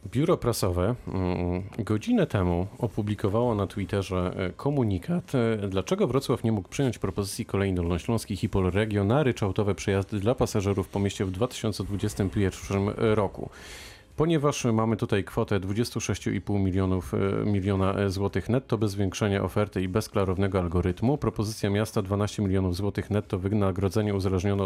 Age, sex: 40-59, male